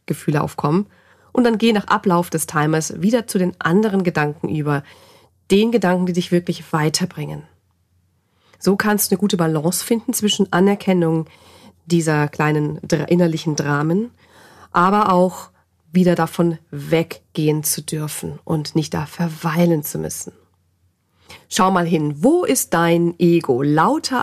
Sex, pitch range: female, 155-205 Hz